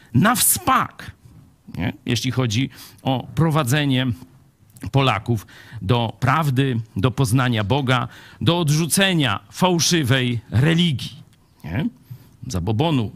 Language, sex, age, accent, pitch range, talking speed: Polish, male, 50-69, native, 115-160 Hz, 85 wpm